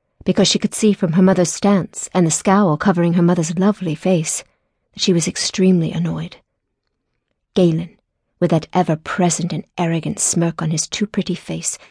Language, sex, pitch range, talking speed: English, female, 165-195 Hz, 160 wpm